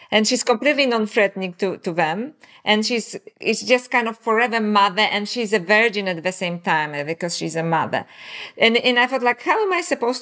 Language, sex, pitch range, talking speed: English, female, 190-245 Hz, 210 wpm